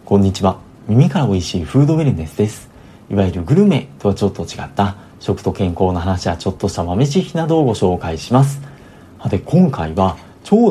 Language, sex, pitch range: Japanese, male, 95-135 Hz